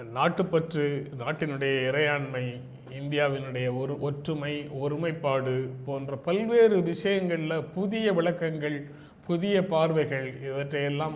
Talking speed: 80 wpm